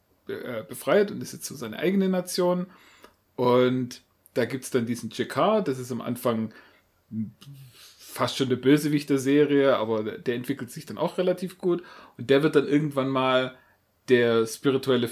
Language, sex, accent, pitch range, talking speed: German, male, German, 120-150 Hz, 155 wpm